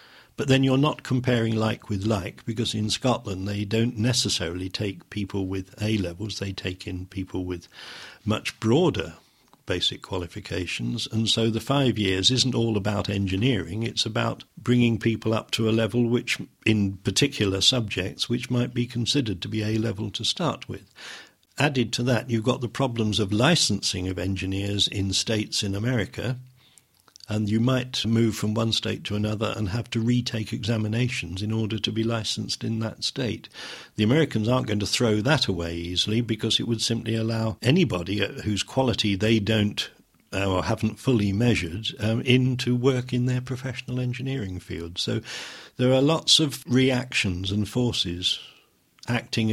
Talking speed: 165 wpm